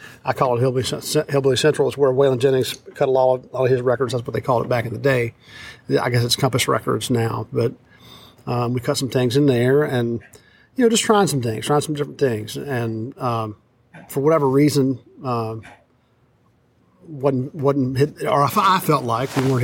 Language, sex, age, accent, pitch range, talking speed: English, male, 50-69, American, 125-145 Hz, 205 wpm